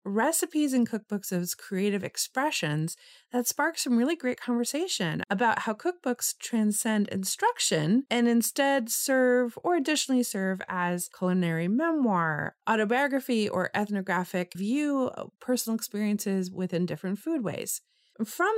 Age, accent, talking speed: 30-49, American, 120 wpm